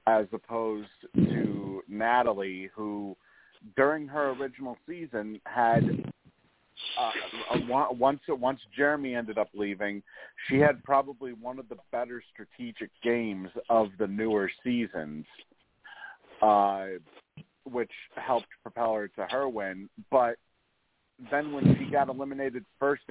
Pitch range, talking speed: 105-130 Hz, 125 wpm